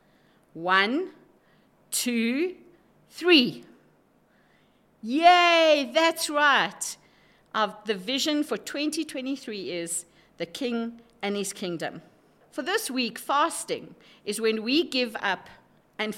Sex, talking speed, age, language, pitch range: female, 100 wpm, 50-69, English, 195-280 Hz